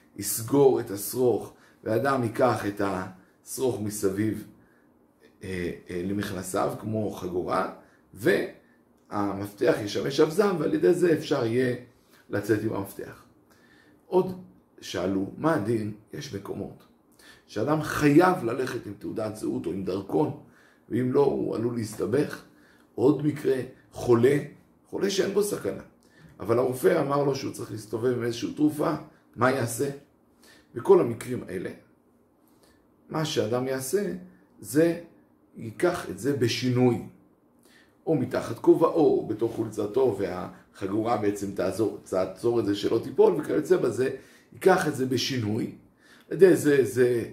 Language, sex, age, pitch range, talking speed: Hebrew, male, 50-69, 100-155 Hz, 125 wpm